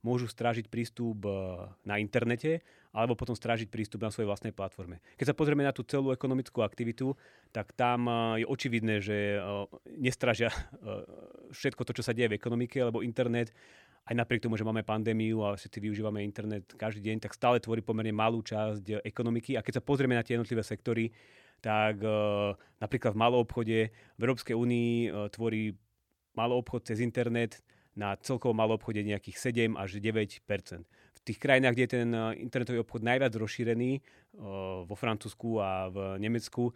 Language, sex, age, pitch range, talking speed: Slovak, male, 30-49, 105-125 Hz, 160 wpm